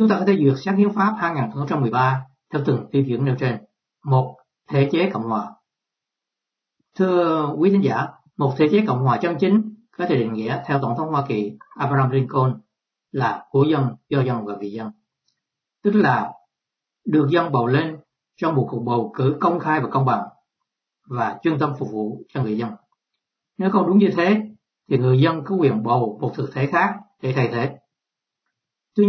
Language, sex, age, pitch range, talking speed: Vietnamese, male, 60-79, 130-175 Hz, 190 wpm